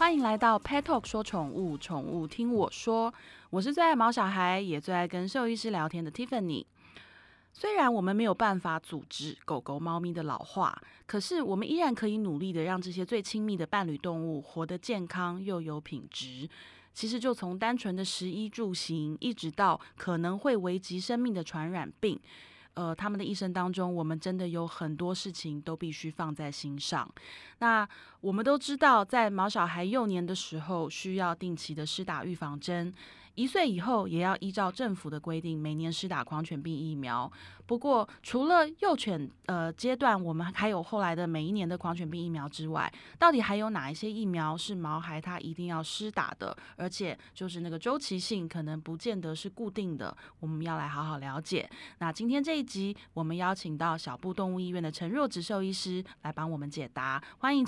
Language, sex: Chinese, female